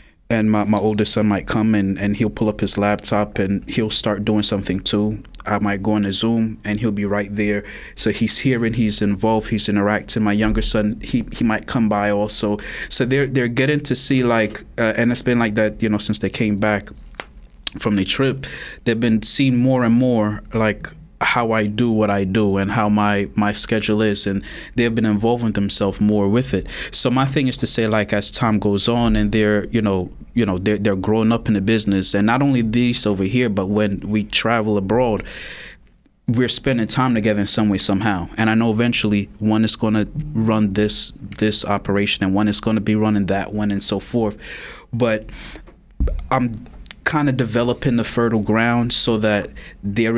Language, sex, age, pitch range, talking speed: English, male, 20-39, 105-115 Hz, 205 wpm